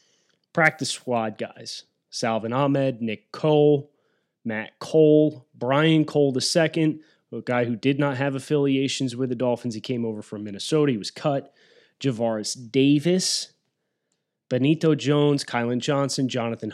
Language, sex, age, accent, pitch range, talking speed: English, male, 30-49, American, 120-145 Hz, 135 wpm